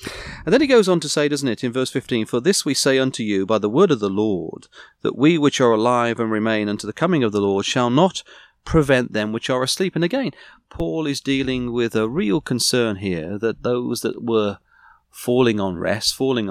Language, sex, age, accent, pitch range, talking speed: English, male, 40-59, British, 105-140 Hz, 225 wpm